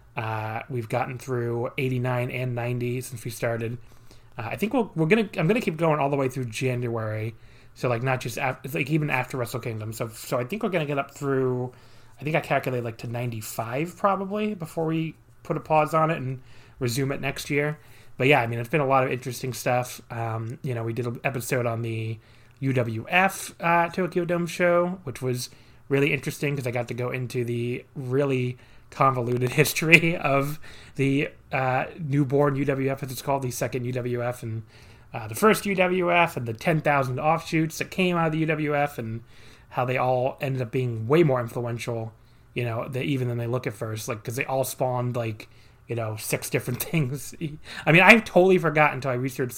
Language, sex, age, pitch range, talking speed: English, male, 30-49, 120-145 Hz, 200 wpm